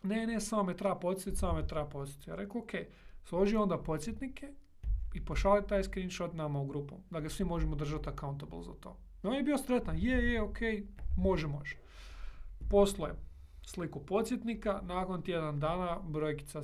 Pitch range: 145-195 Hz